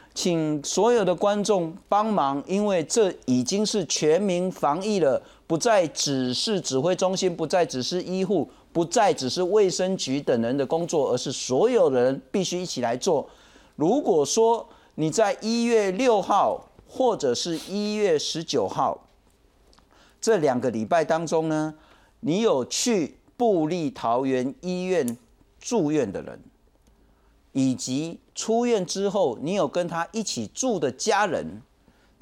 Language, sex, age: Chinese, male, 50-69